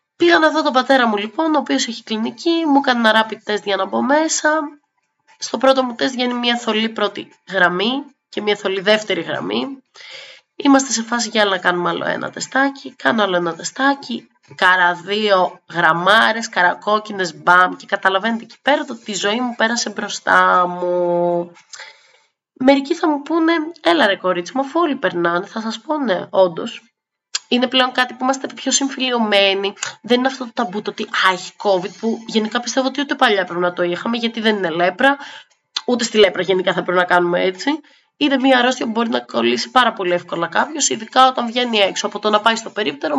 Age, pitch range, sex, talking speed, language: 20-39, 195-265 Hz, female, 190 wpm, Greek